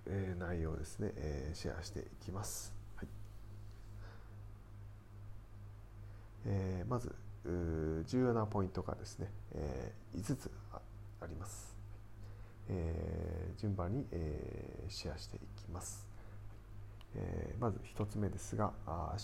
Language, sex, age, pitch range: Japanese, male, 40-59, 95-105 Hz